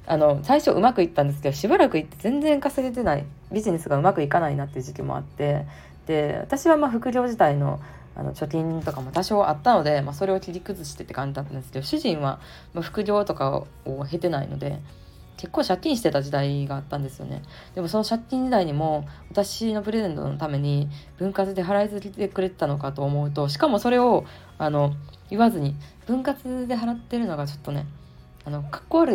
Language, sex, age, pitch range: Japanese, female, 20-39, 145-210 Hz